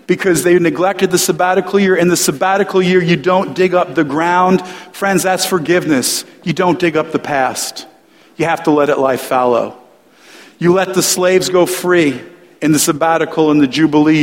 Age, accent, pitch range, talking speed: 50-69, American, 155-180 Hz, 185 wpm